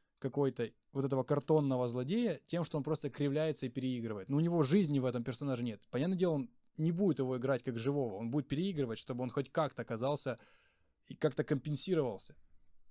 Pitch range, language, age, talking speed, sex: 125-155 Hz, Ukrainian, 20-39, 185 wpm, male